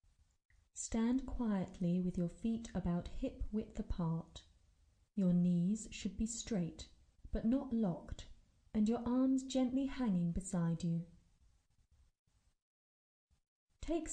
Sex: female